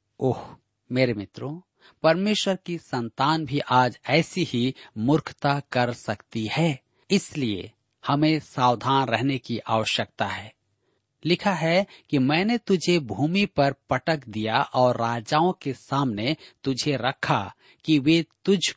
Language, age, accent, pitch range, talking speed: Hindi, 50-69, native, 120-160 Hz, 125 wpm